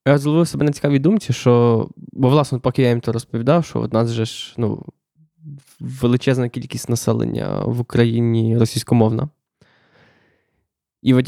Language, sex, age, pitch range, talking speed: Ukrainian, male, 20-39, 115-140 Hz, 145 wpm